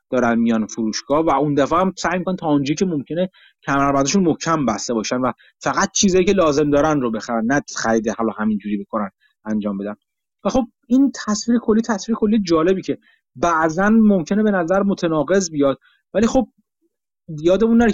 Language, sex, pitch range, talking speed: Persian, male, 140-200 Hz, 170 wpm